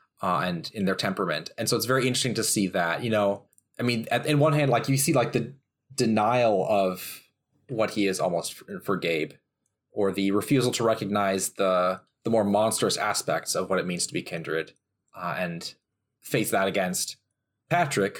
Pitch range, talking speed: 95-130 Hz, 190 wpm